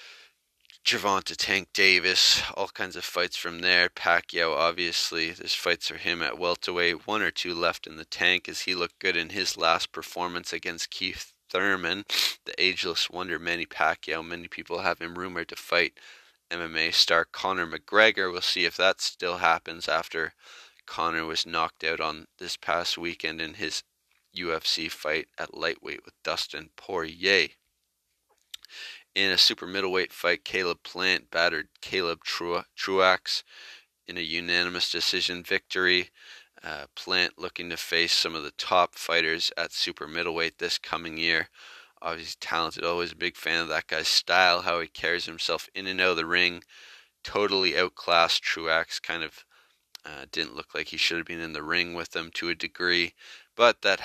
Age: 20-39